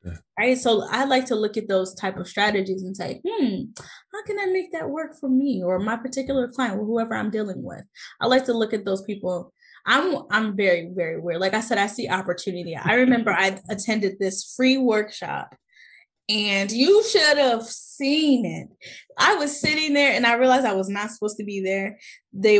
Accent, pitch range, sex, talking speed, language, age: American, 190-260 Hz, female, 205 wpm, English, 10-29